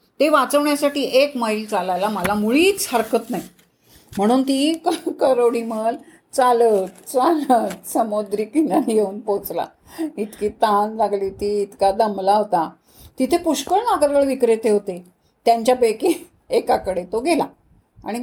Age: 40-59